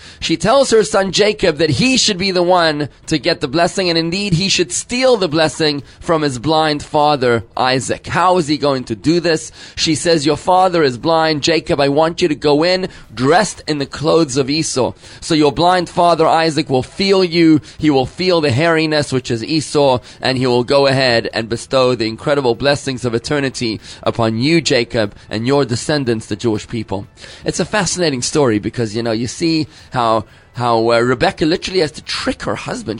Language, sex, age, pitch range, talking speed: English, male, 30-49, 125-170 Hz, 200 wpm